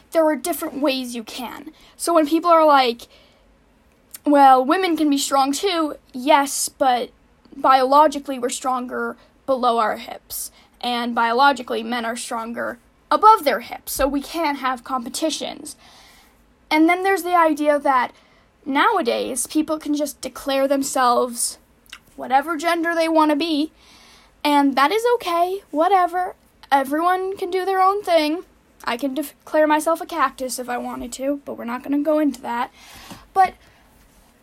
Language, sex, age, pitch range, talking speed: English, female, 10-29, 265-330 Hz, 150 wpm